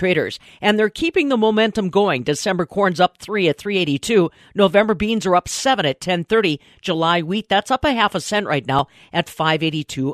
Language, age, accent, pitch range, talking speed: English, 50-69, American, 155-200 Hz, 190 wpm